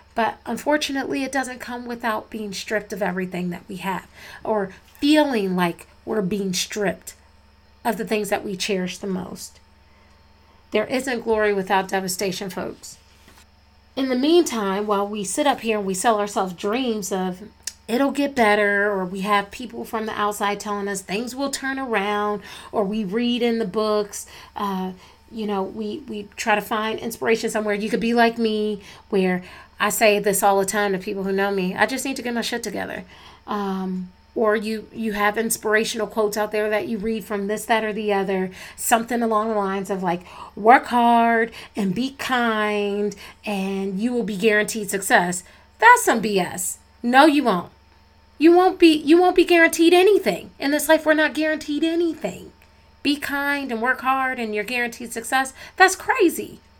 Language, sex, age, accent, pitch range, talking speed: English, female, 40-59, American, 200-245 Hz, 180 wpm